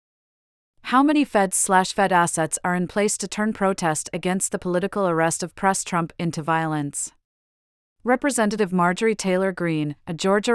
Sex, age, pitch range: female, 30-49, 165-205 Hz